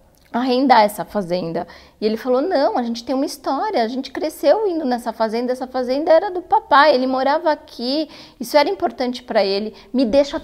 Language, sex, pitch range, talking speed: Portuguese, female, 215-265 Hz, 190 wpm